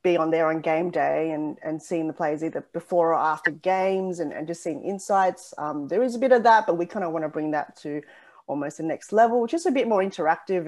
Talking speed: 260 wpm